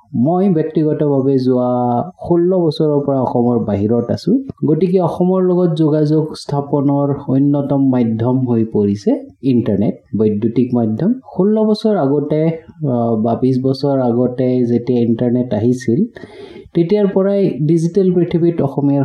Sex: male